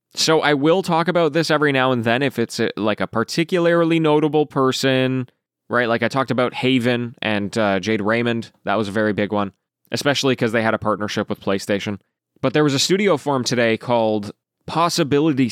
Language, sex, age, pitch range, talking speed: English, male, 20-39, 115-150 Hz, 195 wpm